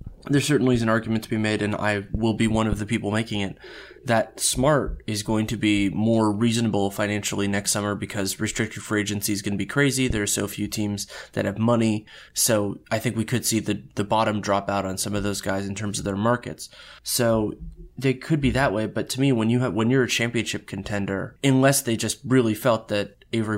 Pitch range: 105-130 Hz